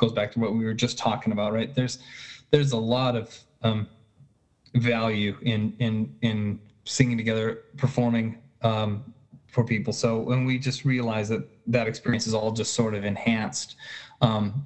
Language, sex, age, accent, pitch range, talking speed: English, male, 20-39, American, 105-125 Hz, 170 wpm